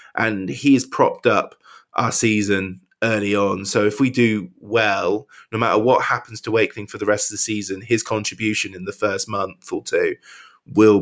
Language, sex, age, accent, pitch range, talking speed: English, male, 20-39, British, 100-115 Hz, 190 wpm